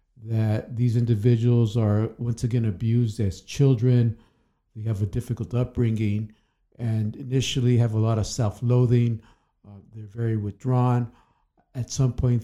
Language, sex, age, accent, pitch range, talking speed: English, male, 50-69, American, 110-125 Hz, 135 wpm